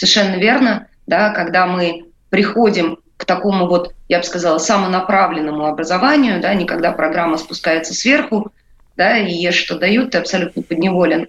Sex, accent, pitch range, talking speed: female, native, 170-210 Hz, 145 wpm